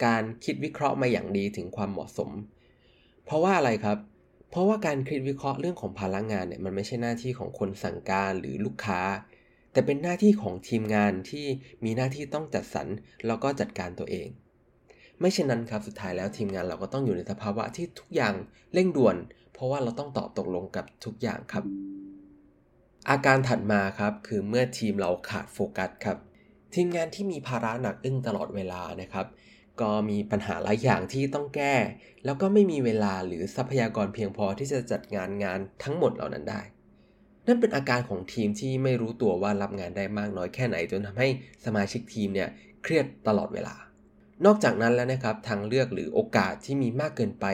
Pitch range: 100-135 Hz